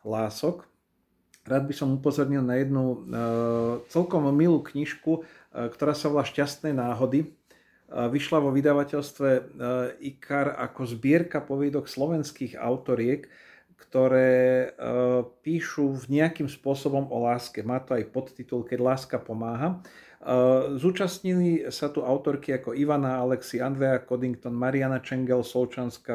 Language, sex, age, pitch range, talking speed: Slovak, male, 40-59, 125-140 Hz, 110 wpm